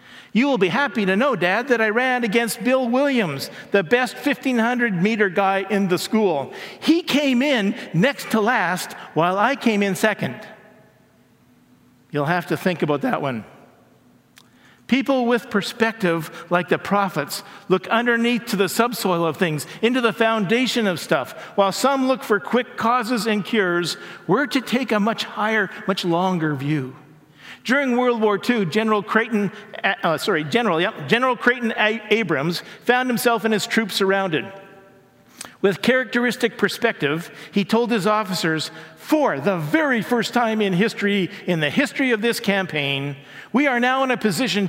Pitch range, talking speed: 190-240 Hz, 160 wpm